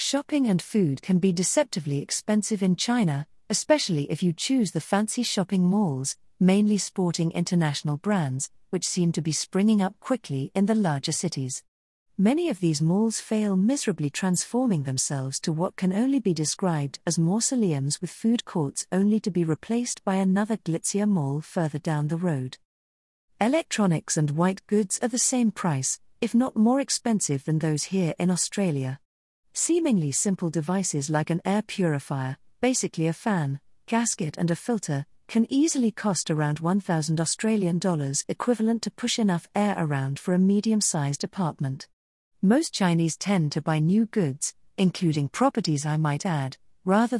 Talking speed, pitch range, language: 160 wpm, 155-210 Hz, English